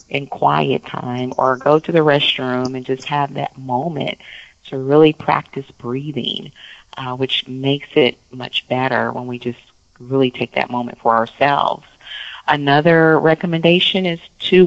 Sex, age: female, 40-59